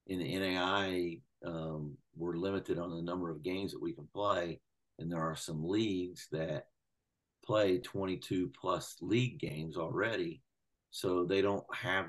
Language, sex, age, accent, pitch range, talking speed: English, male, 50-69, American, 85-95 Hz, 155 wpm